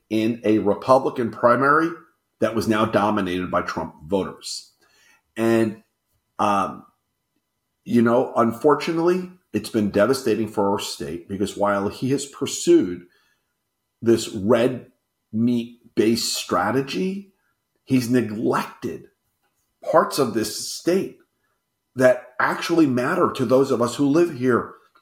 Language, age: English, 40-59